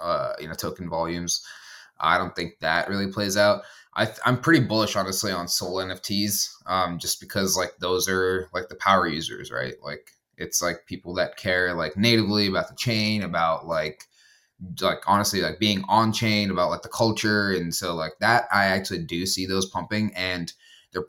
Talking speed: 190 wpm